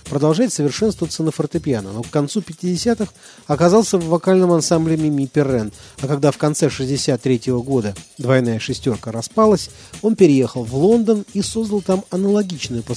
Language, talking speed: Russian, 150 wpm